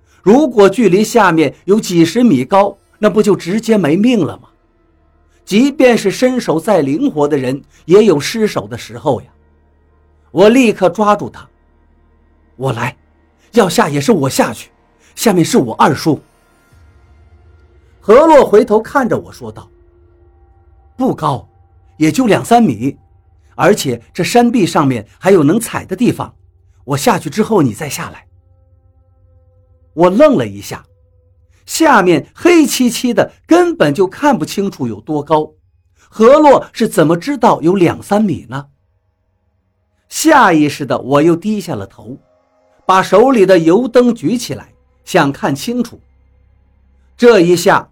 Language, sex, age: Chinese, male, 50-69